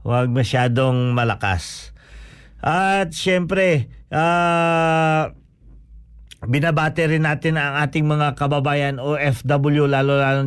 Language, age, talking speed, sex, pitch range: Filipino, 50-69, 80 wpm, male, 130-160 Hz